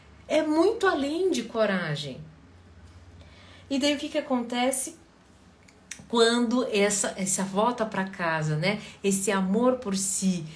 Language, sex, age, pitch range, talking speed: Portuguese, female, 40-59, 195-275 Hz, 125 wpm